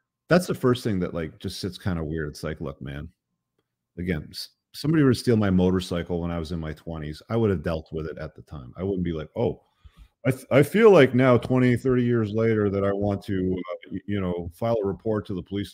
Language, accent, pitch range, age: English, American, 85-110 Hz, 40-59